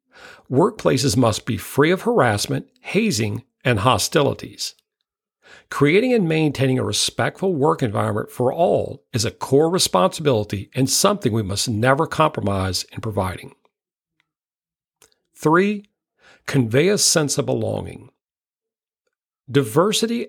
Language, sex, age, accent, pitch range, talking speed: English, male, 50-69, American, 115-175 Hz, 110 wpm